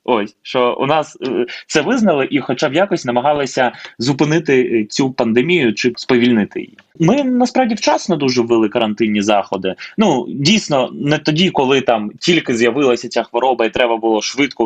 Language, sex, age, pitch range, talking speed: Ukrainian, male, 20-39, 115-155 Hz, 155 wpm